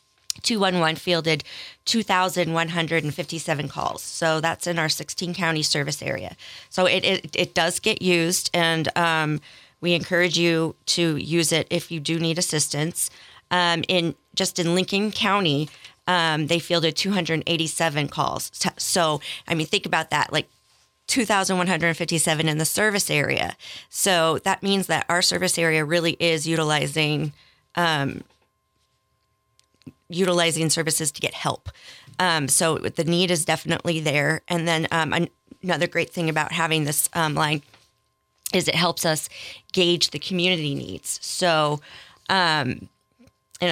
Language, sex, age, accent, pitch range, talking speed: English, female, 40-59, American, 155-175 Hz, 160 wpm